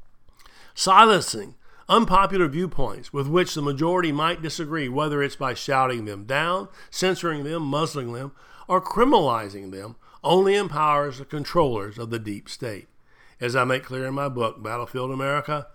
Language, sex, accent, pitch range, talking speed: English, male, American, 125-170 Hz, 150 wpm